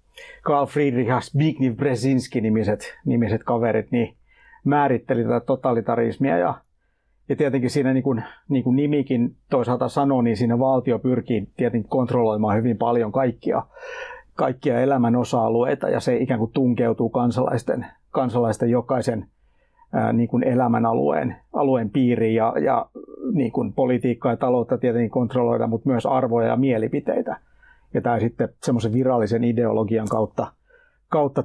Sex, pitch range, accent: male, 115-135 Hz, native